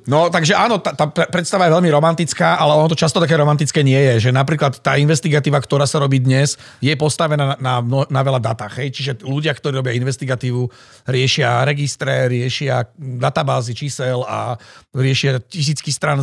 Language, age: Slovak, 50-69